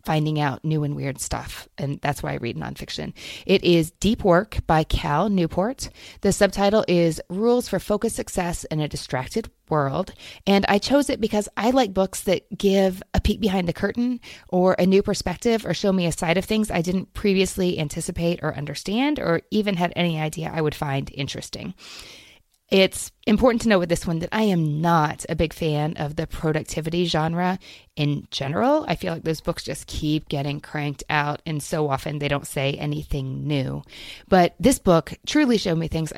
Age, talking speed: 30-49, 190 wpm